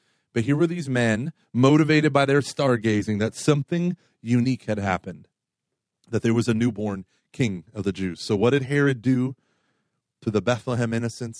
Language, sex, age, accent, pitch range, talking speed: English, male, 30-49, American, 110-155 Hz, 170 wpm